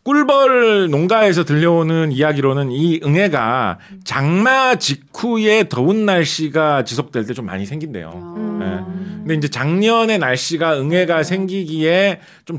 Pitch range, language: 145-200 Hz, English